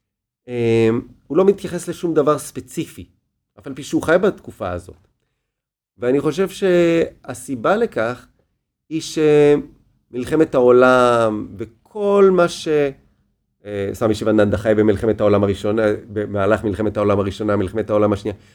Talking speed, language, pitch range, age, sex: 115 wpm, Hebrew, 105-145 Hz, 30-49, male